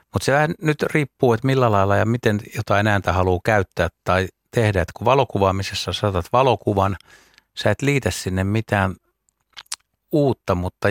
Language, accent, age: Finnish, native, 60-79